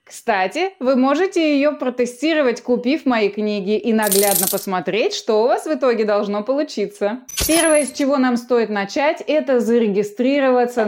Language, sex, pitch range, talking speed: Russian, female, 210-275 Hz, 145 wpm